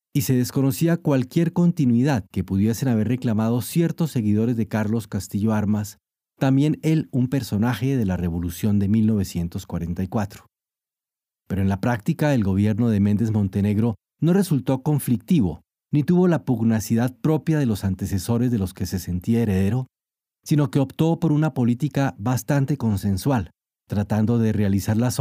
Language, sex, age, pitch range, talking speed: Spanish, male, 40-59, 105-140 Hz, 150 wpm